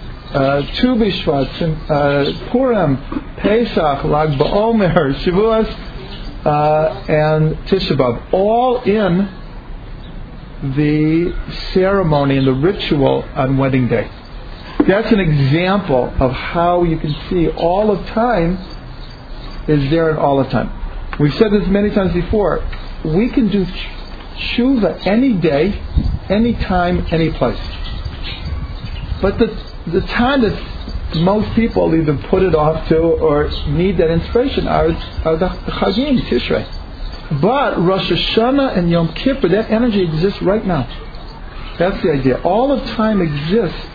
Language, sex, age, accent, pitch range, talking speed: English, male, 50-69, American, 150-205 Hz, 125 wpm